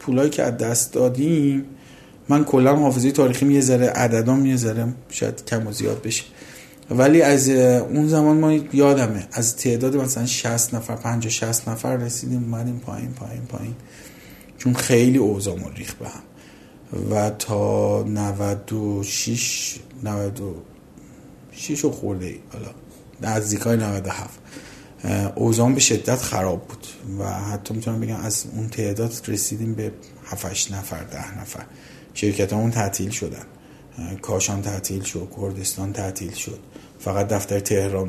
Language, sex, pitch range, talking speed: Persian, male, 100-125 Hz, 135 wpm